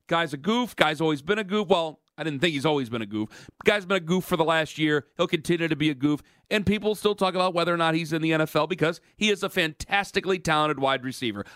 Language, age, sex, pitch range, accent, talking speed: English, 40-59, male, 145-185 Hz, American, 265 wpm